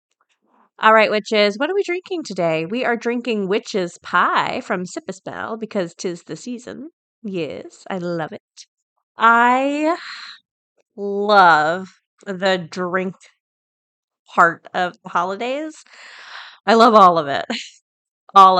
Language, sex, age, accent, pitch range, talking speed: English, female, 30-49, American, 190-275 Hz, 120 wpm